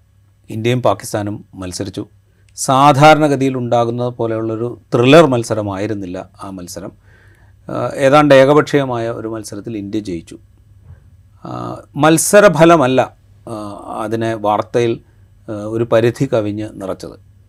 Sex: male